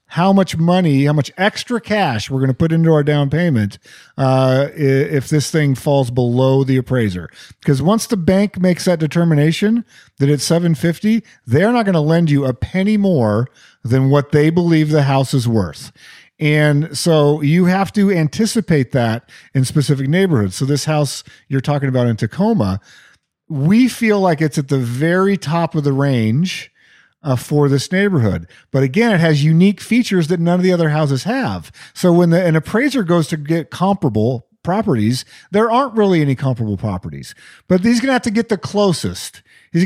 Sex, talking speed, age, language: male, 185 wpm, 40-59, English